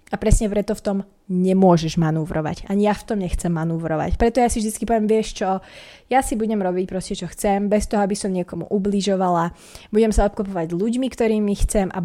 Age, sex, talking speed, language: 20-39, female, 200 wpm, Slovak